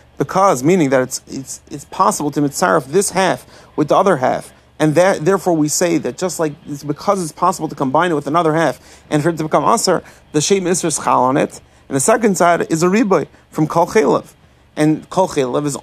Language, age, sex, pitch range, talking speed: English, 30-49, male, 145-180 Hz, 220 wpm